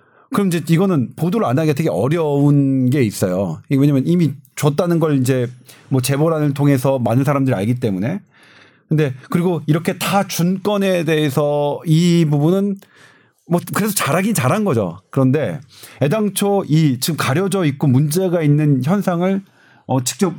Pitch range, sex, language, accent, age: 135-185 Hz, male, Korean, native, 40-59